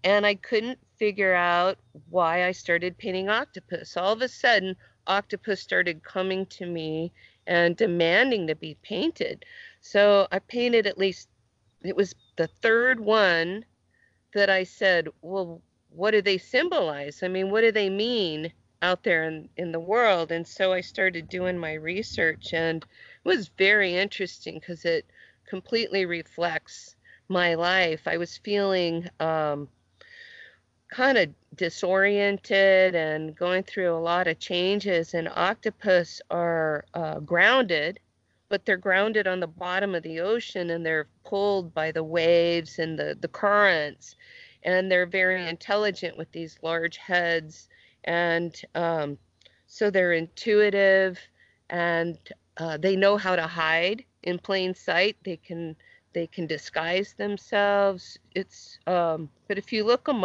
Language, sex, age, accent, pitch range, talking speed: English, female, 40-59, American, 165-200 Hz, 145 wpm